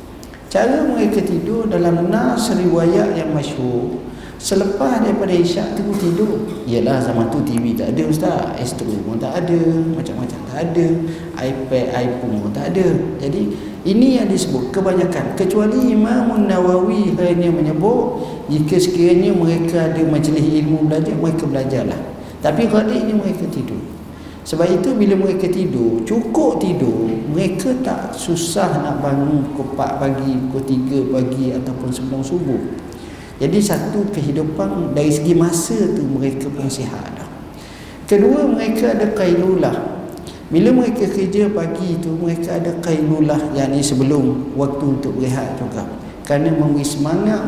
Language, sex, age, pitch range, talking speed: Malay, male, 50-69, 135-185 Hz, 140 wpm